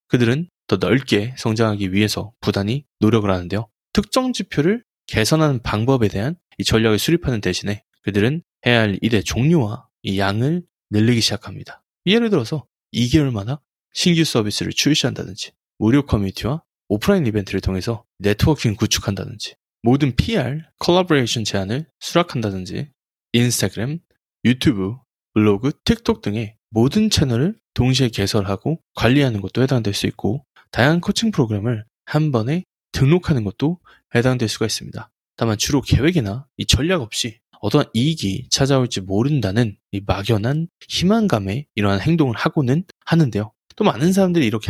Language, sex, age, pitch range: Korean, male, 20-39, 105-155 Hz